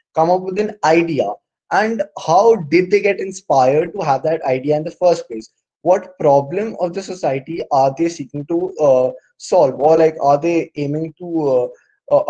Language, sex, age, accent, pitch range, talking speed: English, male, 10-29, Indian, 145-190 Hz, 185 wpm